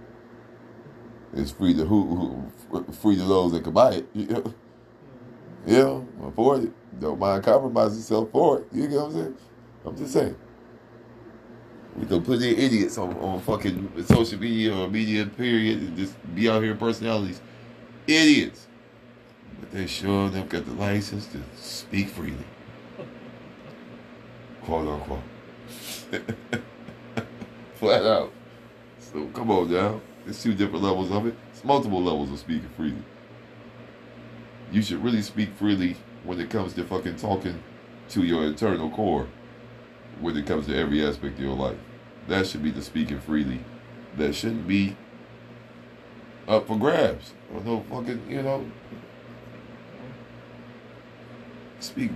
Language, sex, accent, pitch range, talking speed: English, male, American, 80-115 Hz, 140 wpm